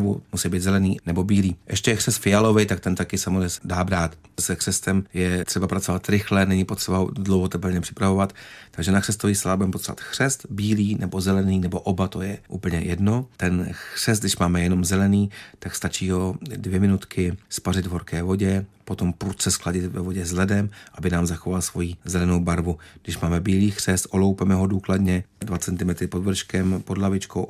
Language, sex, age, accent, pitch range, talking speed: Czech, male, 40-59, native, 90-100 Hz, 175 wpm